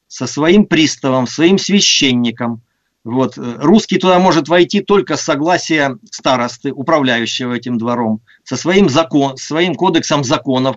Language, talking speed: Russian, 130 wpm